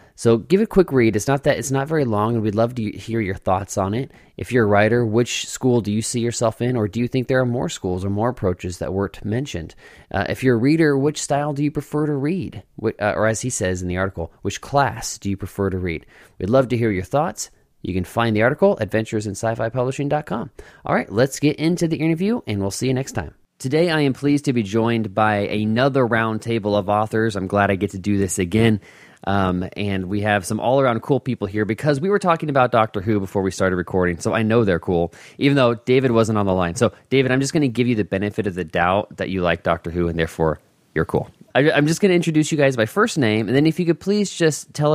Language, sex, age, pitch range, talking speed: English, male, 20-39, 100-135 Hz, 260 wpm